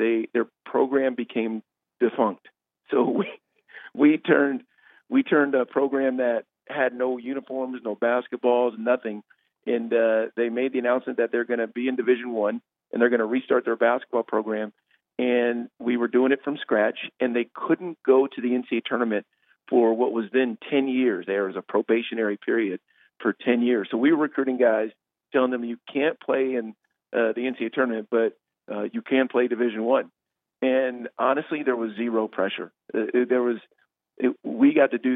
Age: 50-69